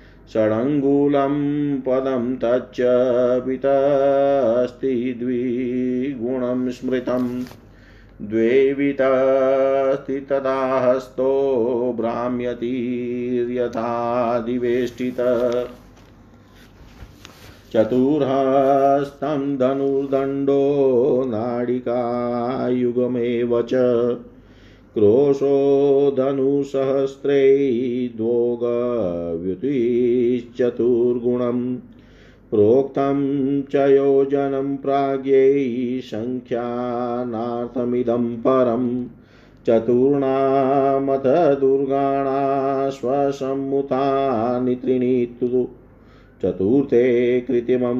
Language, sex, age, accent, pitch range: Hindi, male, 50-69, native, 120-135 Hz